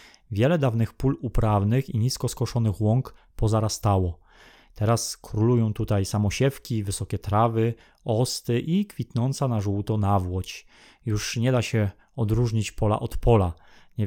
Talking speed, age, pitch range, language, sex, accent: 130 wpm, 20-39, 110-130 Hz, Polish, male, native